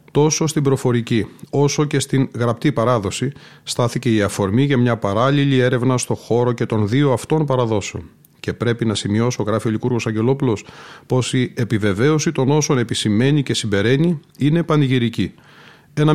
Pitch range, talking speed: 115-140 Hz, 150 wpm